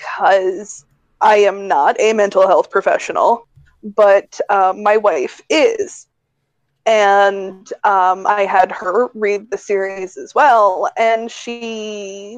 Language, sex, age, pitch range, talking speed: English, female, 20-39, 195-230 Hz, 120 wpm